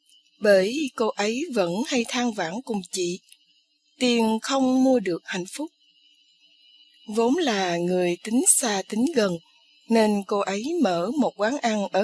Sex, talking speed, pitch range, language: female, 150 wpm, 195-290 Hz, Vietnamese